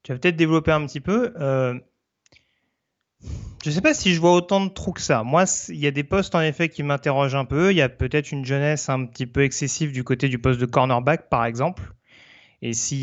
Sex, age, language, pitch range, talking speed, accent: male, 30-49, French, 125-150 Hz, 245 wpm, French